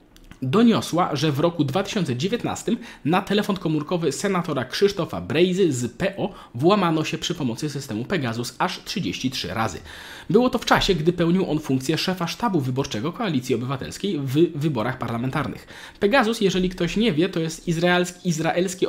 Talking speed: 145 wpm